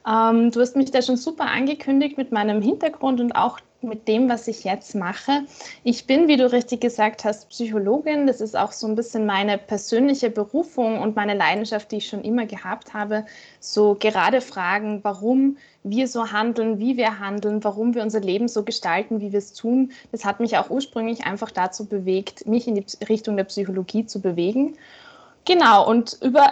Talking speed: 190 wpm